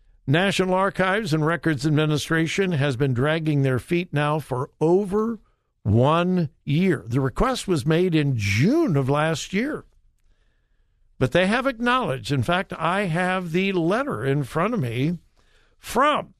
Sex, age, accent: male, 60-79, American